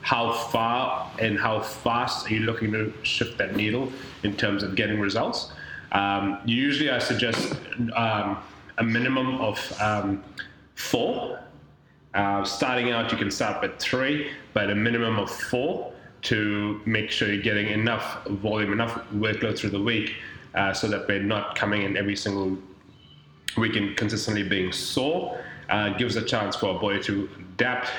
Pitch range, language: 100-115 Hz, English